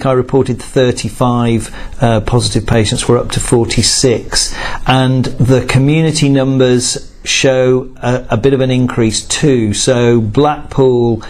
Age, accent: 40-59, British